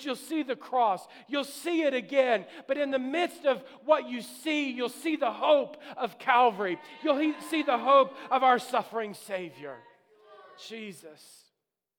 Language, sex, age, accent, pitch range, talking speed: English, male, 40-59, American, 185-240 Hz, 155 wpm